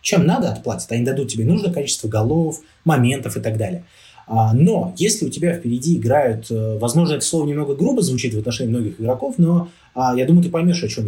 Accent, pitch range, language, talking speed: native, 115-175 Hz, Russian, 195 wpm